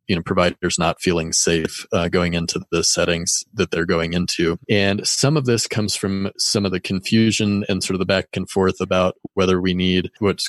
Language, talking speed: English, 210 wpm